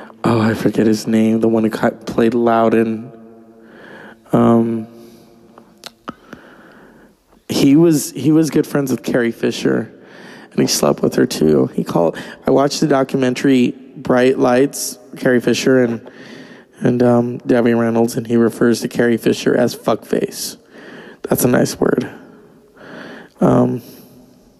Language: English